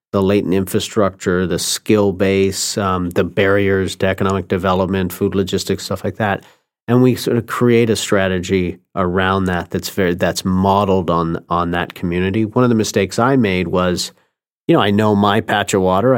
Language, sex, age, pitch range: English, male, 40-59, 95-110 Hz